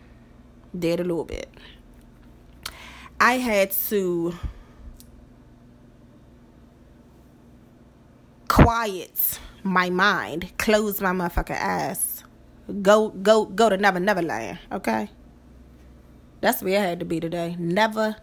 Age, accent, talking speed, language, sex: 20-39, American, 100 wpm, English, female